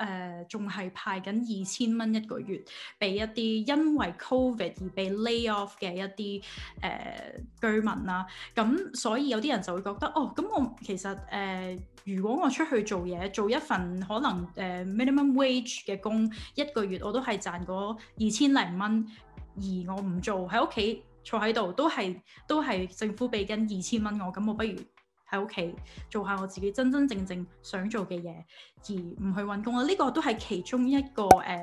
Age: 10-29